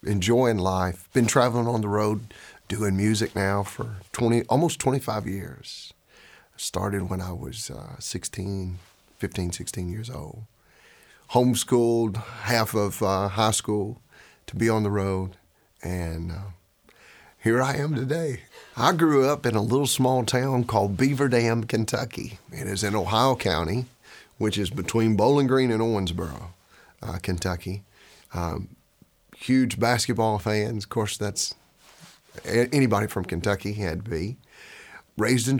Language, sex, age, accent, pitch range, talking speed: English, male, 40-59, American, 95-120 Hz, 140 wpm